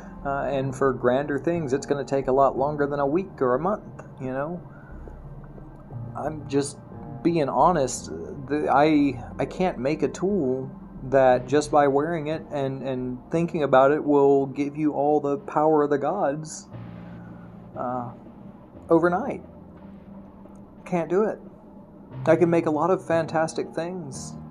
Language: English